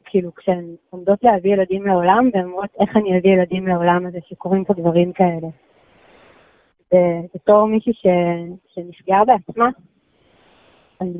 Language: Hebrew